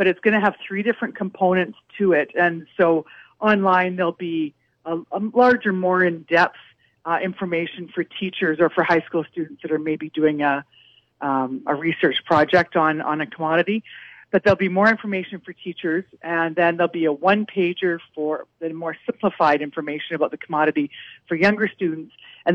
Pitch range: 160-185 Hz